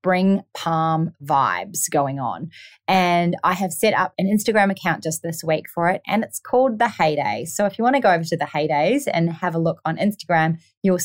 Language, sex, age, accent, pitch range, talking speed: English, female, 20-39, Australian, 160-200 Hz, 215 wpm